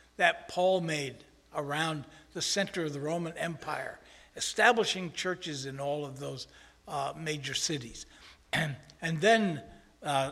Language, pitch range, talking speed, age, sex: English, 150-195 Hz, 135 wpm, 60-79, male